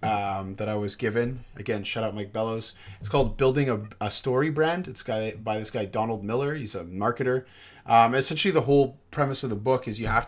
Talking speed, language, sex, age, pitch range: 220 wpm, English, male, 30-49, 105-125 Hz